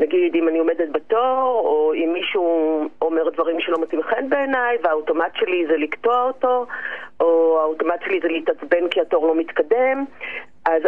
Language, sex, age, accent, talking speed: Hebrew, female, 40-59, native, 160 wpm